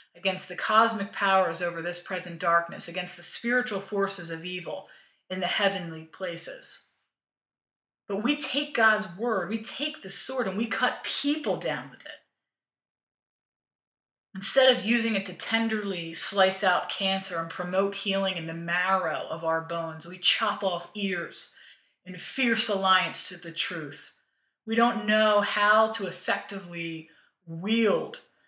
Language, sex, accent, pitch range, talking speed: English, female, American, 175-215 Hz, 145 wpm